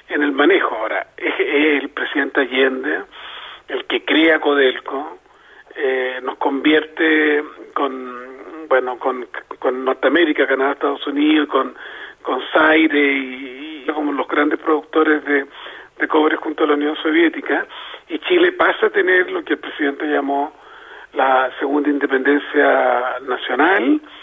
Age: 40-59